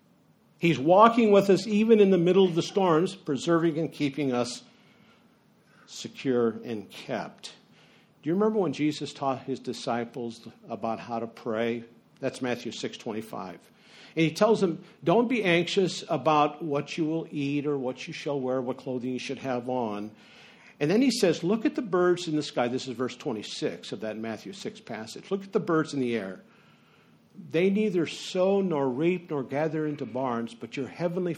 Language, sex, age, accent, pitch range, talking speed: English, male, 50-69, American, 125-175 Hz, 185 wpm